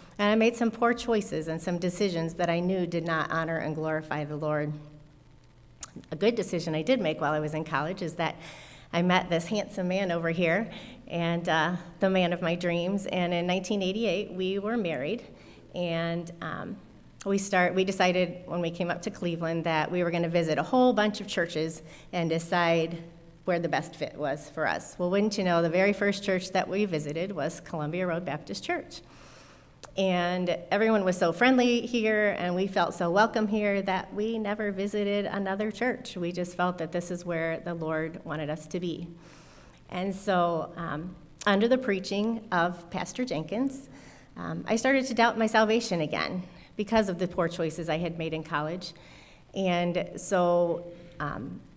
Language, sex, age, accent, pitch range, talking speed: English, female, 30-49, American, 165-200 Hz, 185 wpm